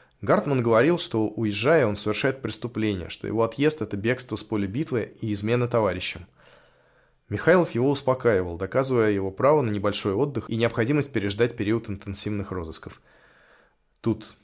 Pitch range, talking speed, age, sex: 100-125 Hz, 140 wpm, 20-39, male